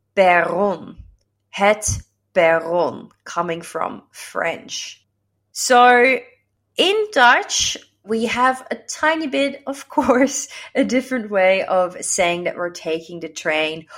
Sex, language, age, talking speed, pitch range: female, Dutch, 30-49, 105 wpm, 165-245 Hz